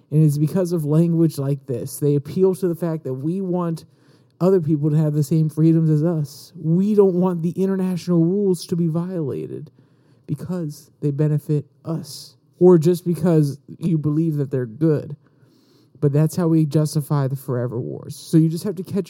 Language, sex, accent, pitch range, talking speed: English, male, American, 140-165 Hz, 185 wpm